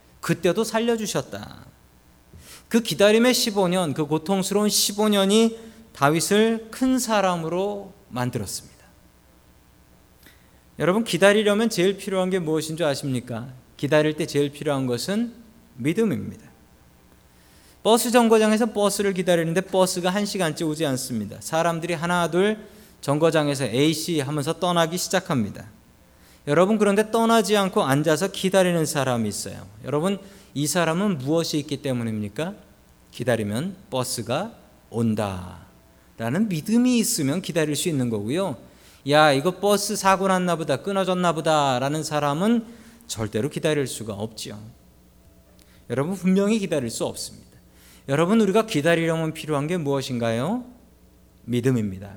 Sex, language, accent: male, Korean, native